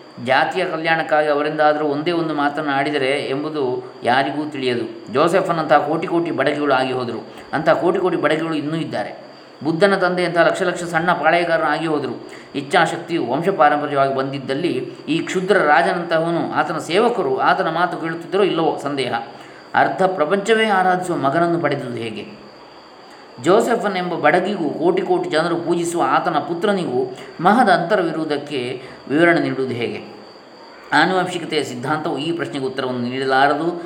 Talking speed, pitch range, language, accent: 120 wpm, 140-175 Hz, Kannada, native